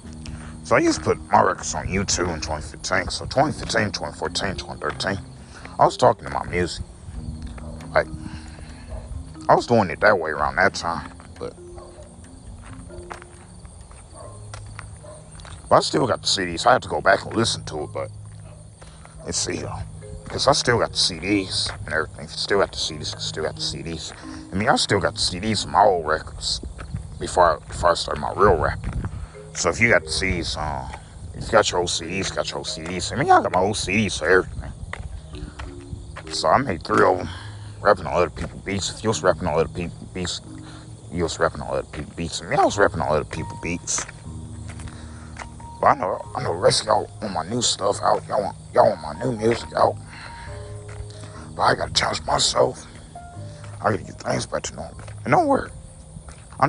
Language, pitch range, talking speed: English, 80-100 Hz, 195 wpm